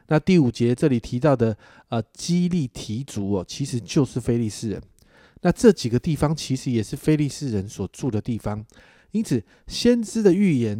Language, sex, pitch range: Chinese, male, 110-150 Hz